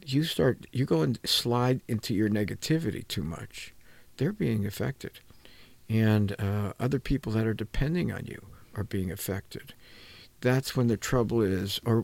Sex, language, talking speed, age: male, English, 160 wpm, 50-69